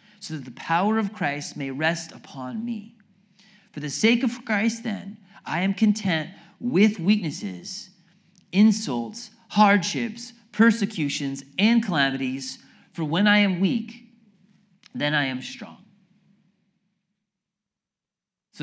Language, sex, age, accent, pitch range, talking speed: English, male, 30-49, American, 170-215 Hz, 115 wpm